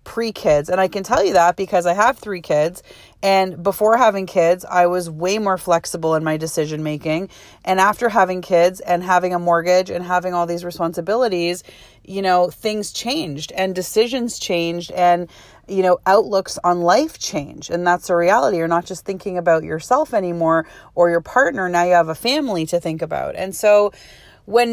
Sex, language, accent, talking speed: female, English, American, 190 wpm